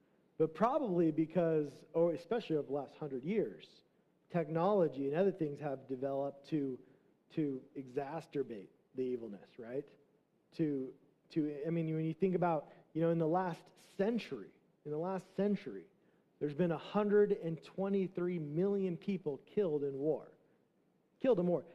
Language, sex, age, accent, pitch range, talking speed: English, male, 40-59, American, 155-195 Hz, 140 wpm